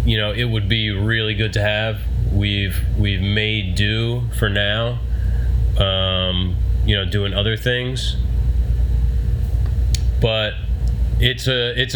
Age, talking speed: 30-49, 125 wpm